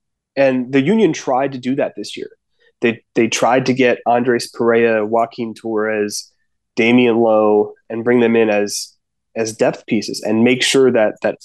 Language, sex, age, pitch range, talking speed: English, male, 20-39, 115-130 Hz, 175 wpm